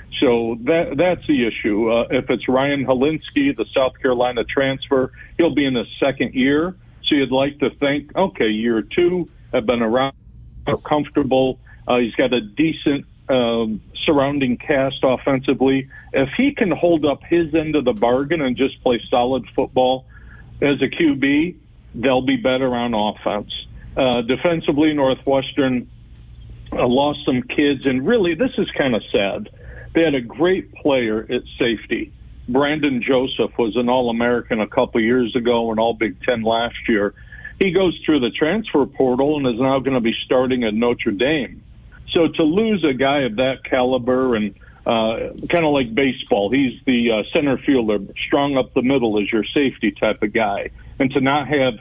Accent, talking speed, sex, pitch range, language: American, 175 wpm, male, 120-145 Hz, English